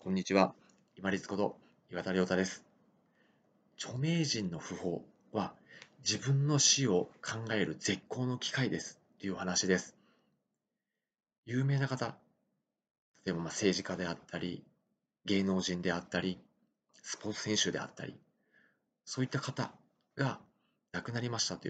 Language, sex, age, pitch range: Japanese, male, 40-59, 95-150 Hz